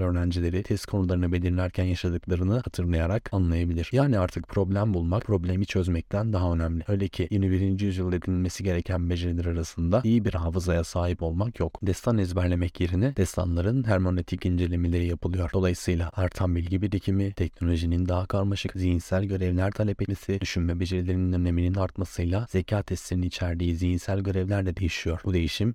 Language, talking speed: Turkish, 140 wpm